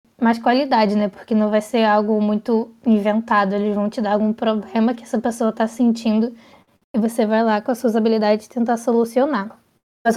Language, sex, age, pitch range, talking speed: Portuguese, female, 10-29, 220-245 Hz, 190 wpm